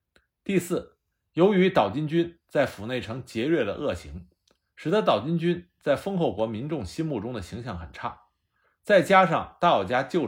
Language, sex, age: Chinese, male, 50-69